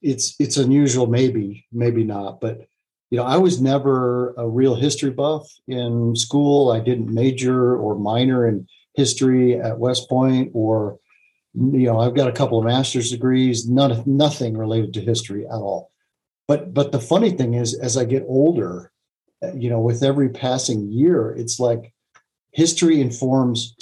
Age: 50-69